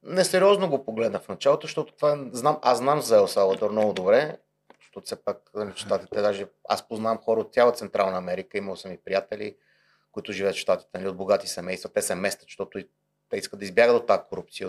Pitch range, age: 105-150 Hz, 30-49